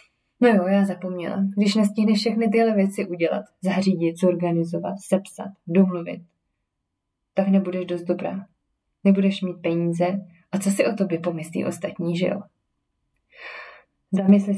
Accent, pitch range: native, 180-200 Hz